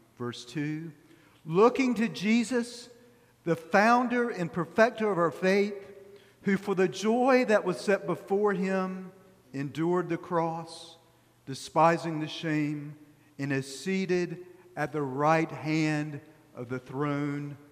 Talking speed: 125 wpm